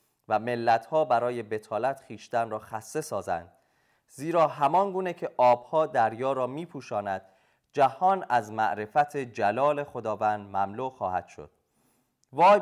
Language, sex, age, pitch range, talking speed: Persian, male, 30-49, 115-150 Hz, 120 wpm